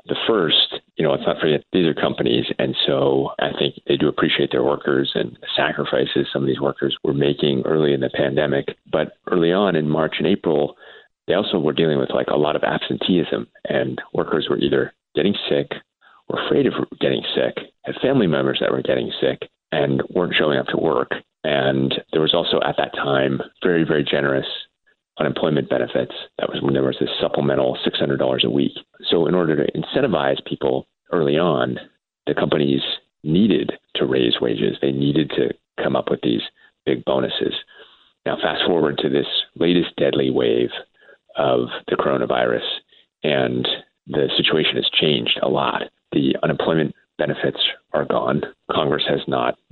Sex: male